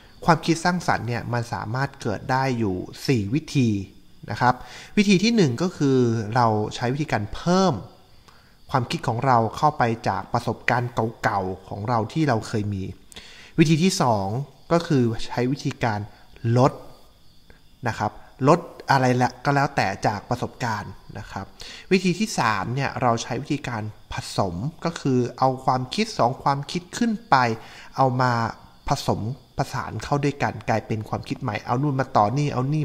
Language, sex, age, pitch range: Thai, male, 20-39, 110-145 Hz